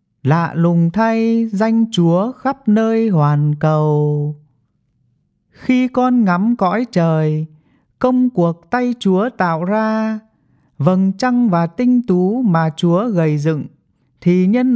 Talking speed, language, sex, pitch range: 125 wpm, English, male, 155-220 Hz